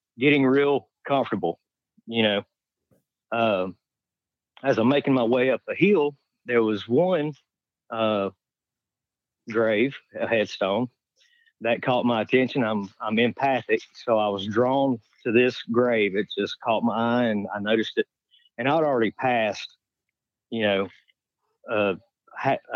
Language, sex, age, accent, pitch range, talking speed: English, male, 40-59, American, 105-130 Hz, 135 wpm